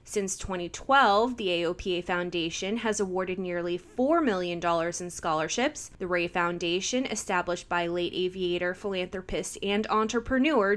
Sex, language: female, English